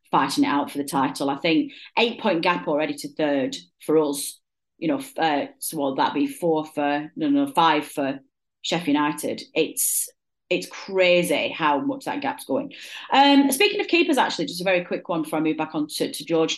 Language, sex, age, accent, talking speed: English, female, 30-49, British, 205 wpm